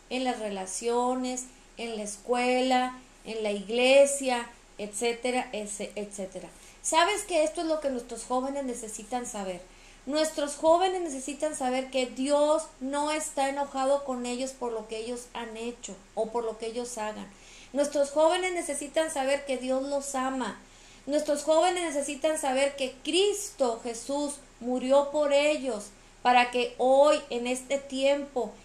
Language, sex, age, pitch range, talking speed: Spanish, female, 30-49, 245-290 Hz, 140 wpm